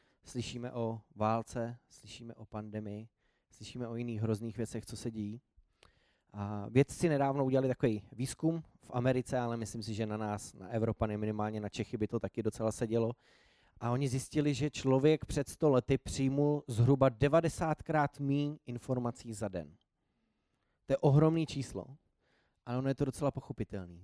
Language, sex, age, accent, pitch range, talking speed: Czech, male, 20-39, native, 110-135 Hz, 155 wpm